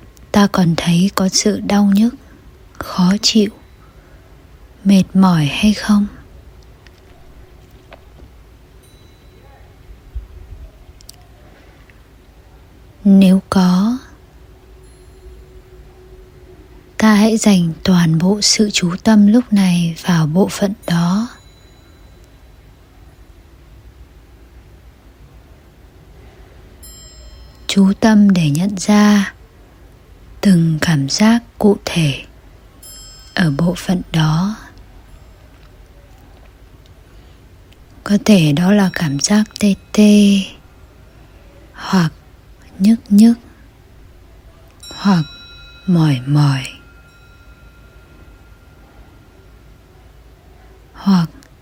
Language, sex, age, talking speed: Vietnamese, female, 20-39, 65 wpm